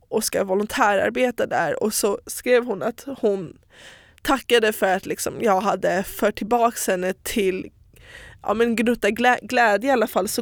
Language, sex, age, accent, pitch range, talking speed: Swedish, female, 20-39, native, 205-240 Hz, 165 wpm